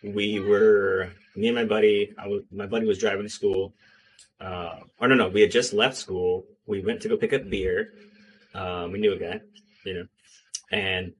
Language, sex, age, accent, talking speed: English, male, 20-39, American, 205 wpm